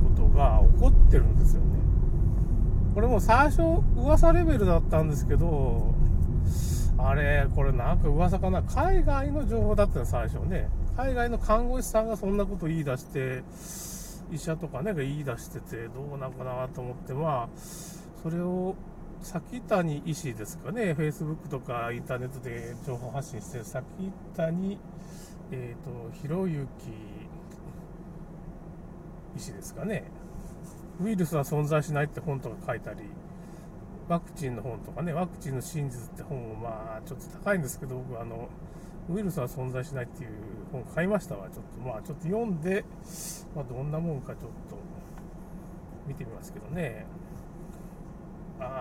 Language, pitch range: Japanese, 130-180 Hz